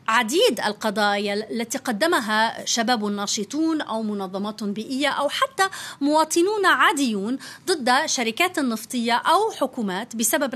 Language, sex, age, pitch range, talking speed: Arabic, female, 30-49, 220-285 Hz, 110 wpm